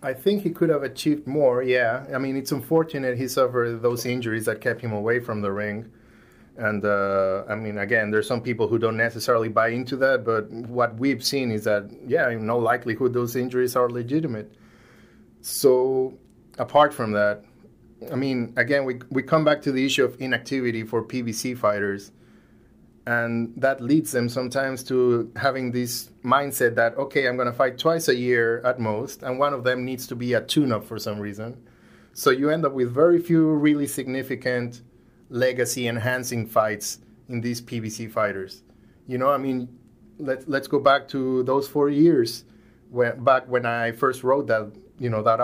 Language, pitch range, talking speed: English, 115-135 Hz, 180 wpm